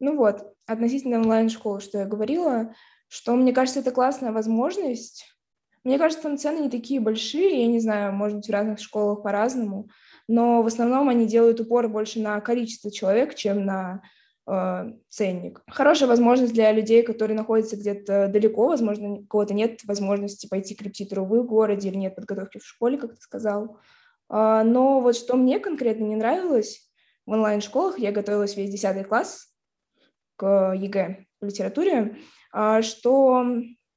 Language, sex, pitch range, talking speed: Russian, female, 205-250 Hz, 155 wpm